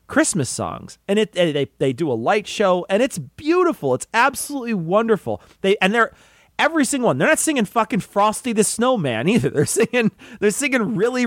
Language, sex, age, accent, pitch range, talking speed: English, male, 30-49, American, 155-225 Hz, 185 wpm